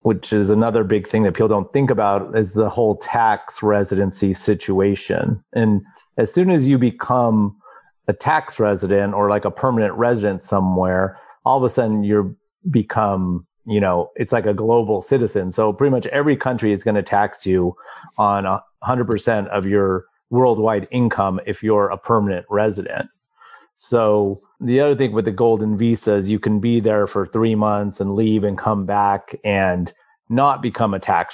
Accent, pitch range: American, 100-120 Hz